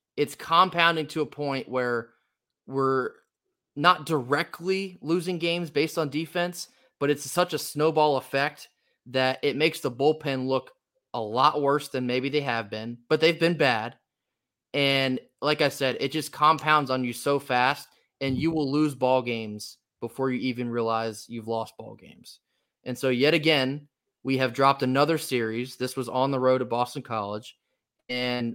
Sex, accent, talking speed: male, American, 170 wpm